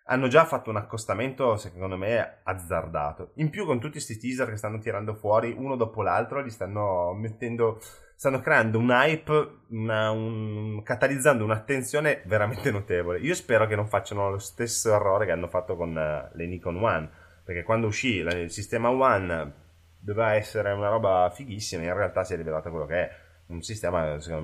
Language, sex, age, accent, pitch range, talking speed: Italian, male, 20-39, native, 85-115 Hz, 175 wpm